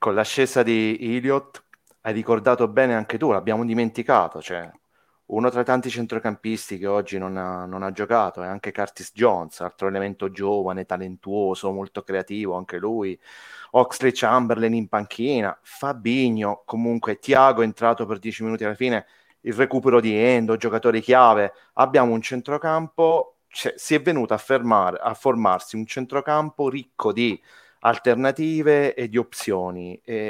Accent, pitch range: native, 105-130 Hz